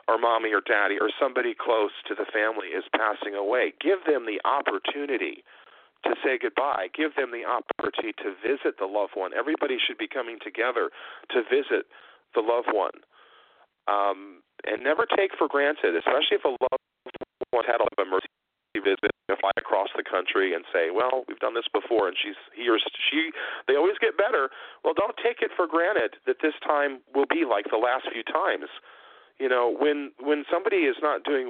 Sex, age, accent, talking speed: male, 40-59, American, 190 wpm